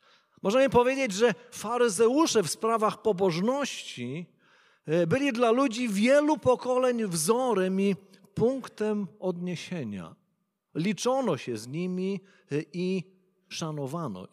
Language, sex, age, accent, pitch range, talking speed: Polish, male, 50-69, native, 175-250 Hz, 90 wpm